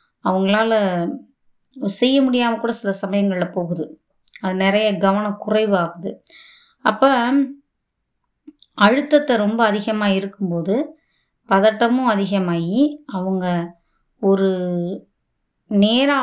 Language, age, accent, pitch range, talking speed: Tamil, 20-39, native, 190-240 Hz, 75 wpm